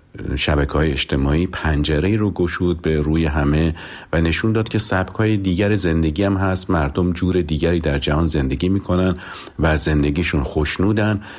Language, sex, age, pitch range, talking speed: Persian, male, 50-69, 75-90 Hz, 150 wpm